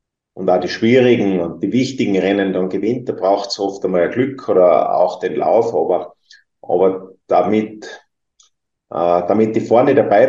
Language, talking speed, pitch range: German, 165 wpm, 95-115 Hz